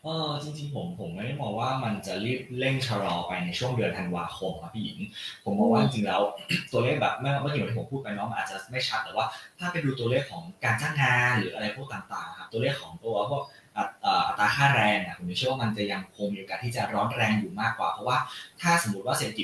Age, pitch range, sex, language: 20-39, 110-140 Hz, male, Thai